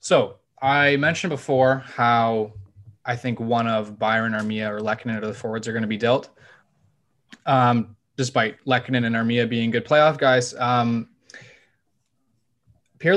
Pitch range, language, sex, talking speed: 115-130 Hz, English, male, 150 wpm